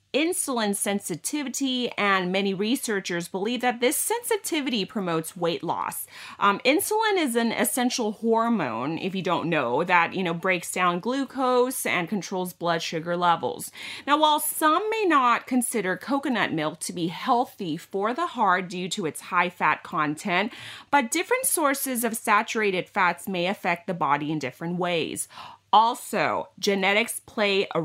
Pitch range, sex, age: 175-245 Hz, female, 30-49